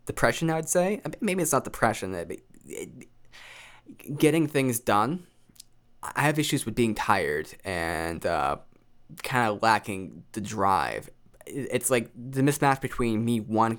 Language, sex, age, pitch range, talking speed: English, male, 10-29, 105-125 Hz, 125 wpm